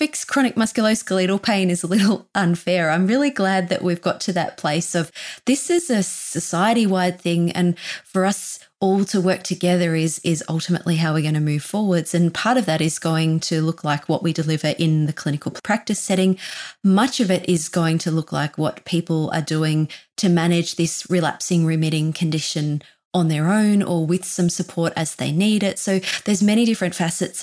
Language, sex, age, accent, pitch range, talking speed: English, female, 20-39, Australian, 165-200 Hz, 195 wpm